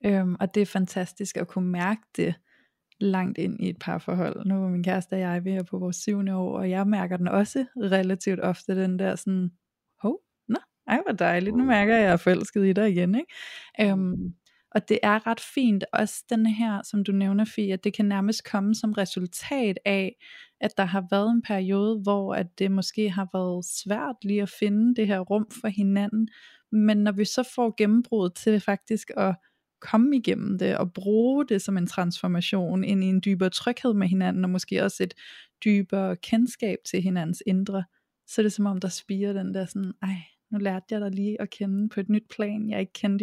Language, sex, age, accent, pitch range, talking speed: Danish, female, 20-39, native, 190-215 Hz, 215 wpm